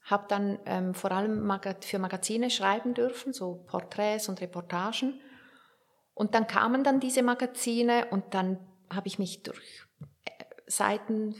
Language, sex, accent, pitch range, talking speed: German, female, Austrian, 195-230 Hz, 135 wpm